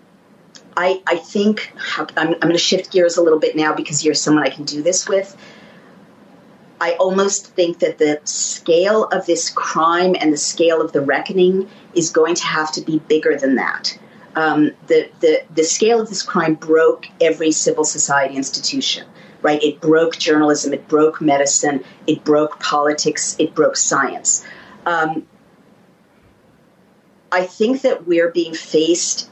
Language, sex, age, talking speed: English, female, 40-59, 160 wpm